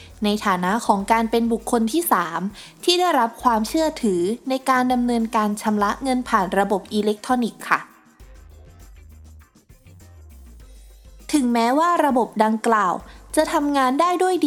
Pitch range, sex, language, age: 200-270 Hz, female, Thai, 20-39